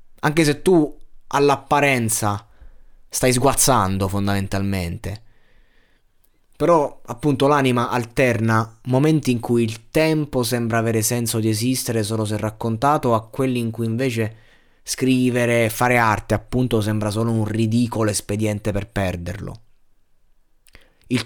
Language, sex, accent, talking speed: Italian, male, native, 120 wpm